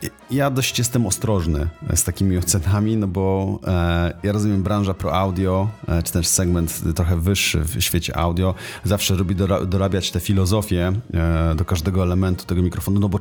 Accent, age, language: native, 30-49, Polish